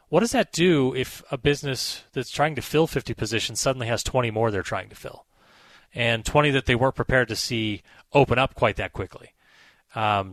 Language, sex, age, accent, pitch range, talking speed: English, male, 30-49, American, 110-140 Hz, 205 wpm